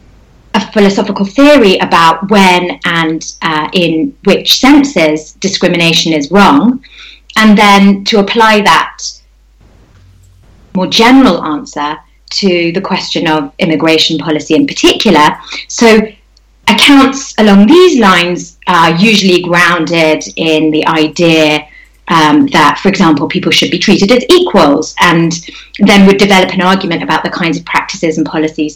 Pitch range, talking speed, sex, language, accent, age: 155-220 Hz, 130 wpm, female, English, British, 30-49